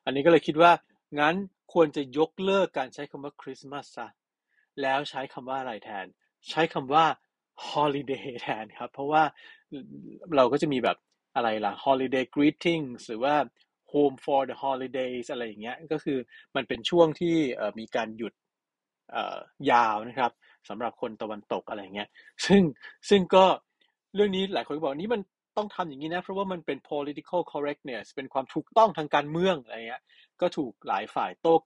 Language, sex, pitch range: Thai, male, 130-165 Hz